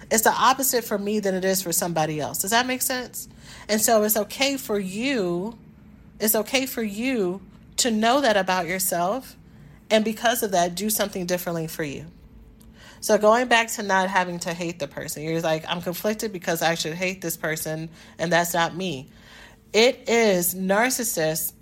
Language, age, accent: English, 40-59, American